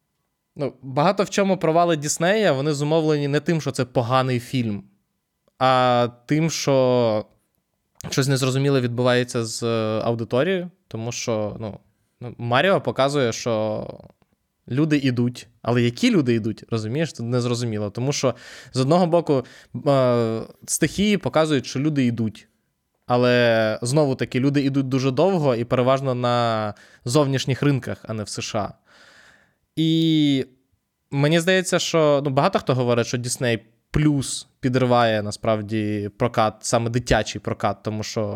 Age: 20-39